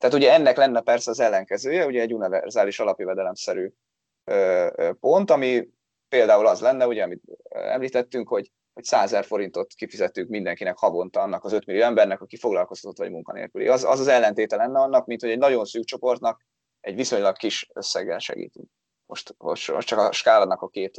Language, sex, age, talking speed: Hungarian, male, 20-39, 180 wpm